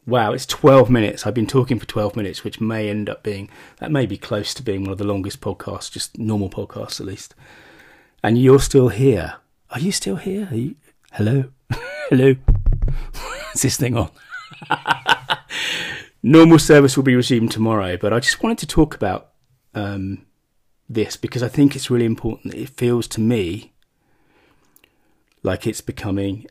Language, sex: English, male